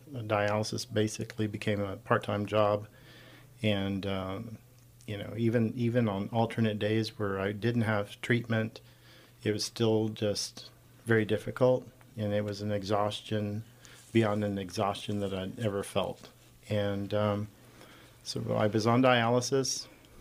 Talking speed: 135 wpm